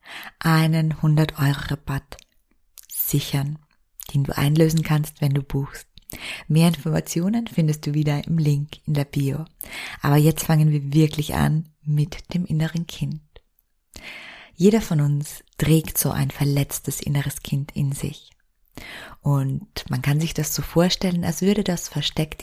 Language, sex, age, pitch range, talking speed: German, female, 20-39, 145-175 Hz, 145 wpm